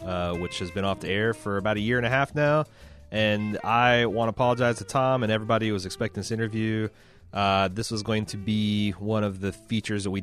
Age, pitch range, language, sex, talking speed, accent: 30-49, 95-110 Hz, English, male, 240 wpm, American